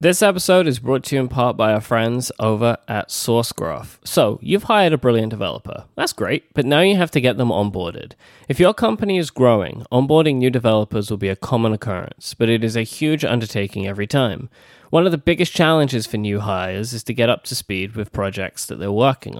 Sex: male